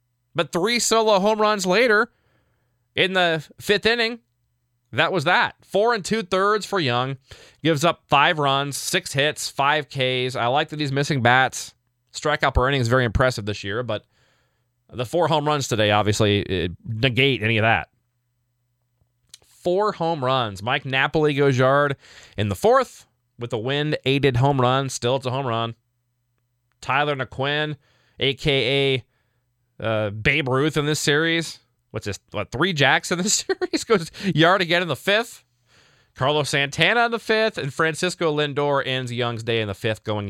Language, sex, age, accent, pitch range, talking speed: English, male, 20-39, American, 115-150 Hz, 160 wpm